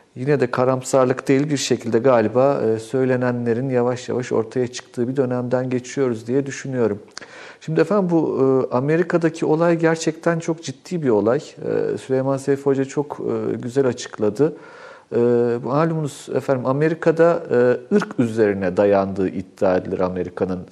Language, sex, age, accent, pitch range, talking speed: Turkish, male, 50-69, native, 120-145 Hz, 120 wpm